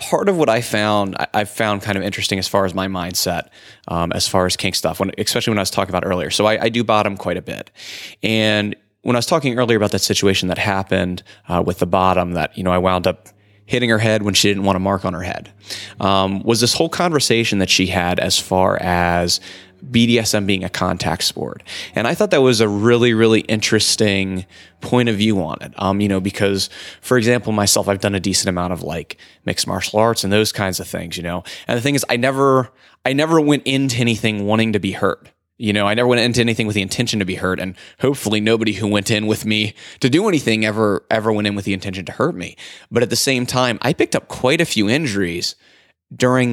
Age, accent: 20-39, American